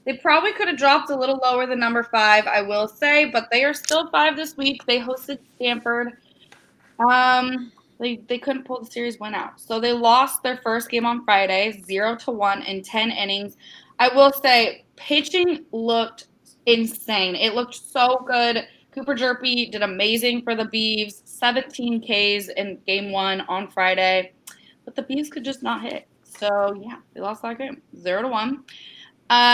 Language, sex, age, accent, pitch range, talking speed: English, female, 20-39, American, 210-270 Hz, 180 wpm